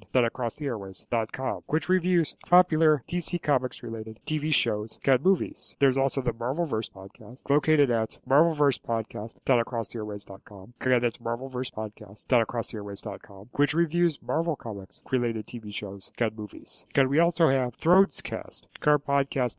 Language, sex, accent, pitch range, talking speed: English, male, American, 110-145 Hz, 145 wpm